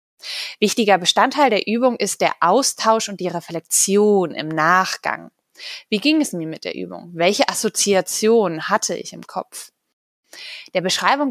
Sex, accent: female, German